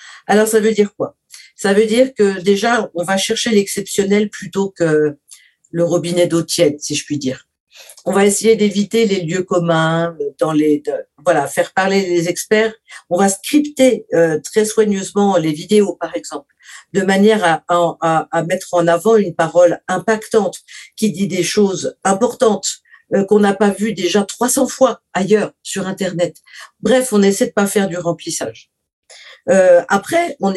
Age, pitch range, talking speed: 50-69, 175-225 Hz, 170 wpm